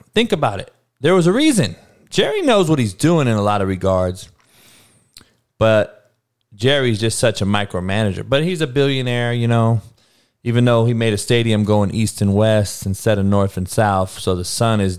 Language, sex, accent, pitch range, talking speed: English, male, American, 95-120 Hz, 190 wpm